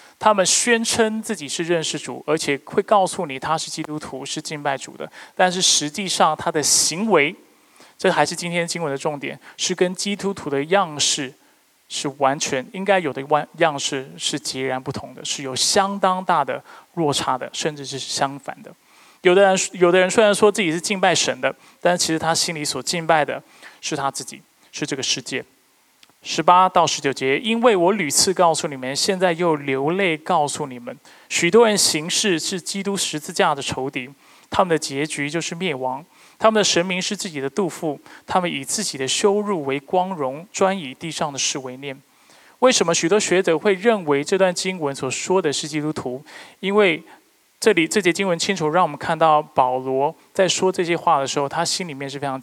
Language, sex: Chinese, male